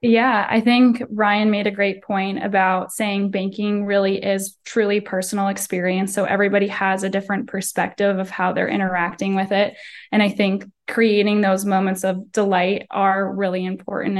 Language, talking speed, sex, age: English, 165 wpm, female, 10-29